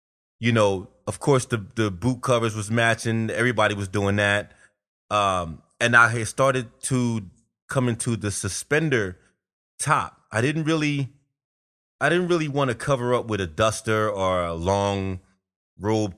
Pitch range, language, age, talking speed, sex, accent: 95-125 Hz, English, 20-39, 150 wpm, male, American